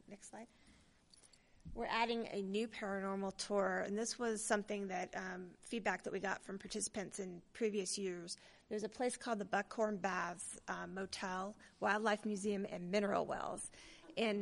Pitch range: 185-215 Hz